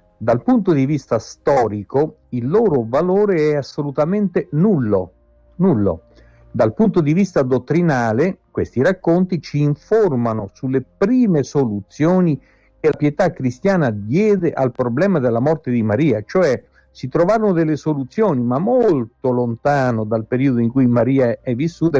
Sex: male